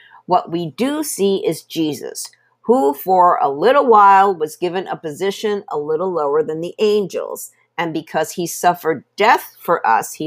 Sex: female